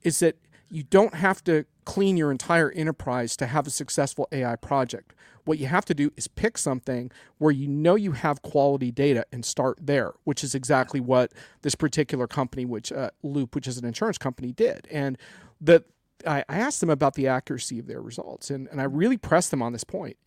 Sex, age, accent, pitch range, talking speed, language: male, 40-59, American, 130-165 Hz, 210 wpm, English